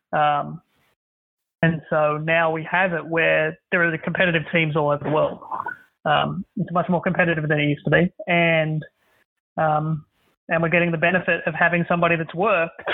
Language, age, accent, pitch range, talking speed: English, 30-49, Australian, 160-190 Hz, 180 wpm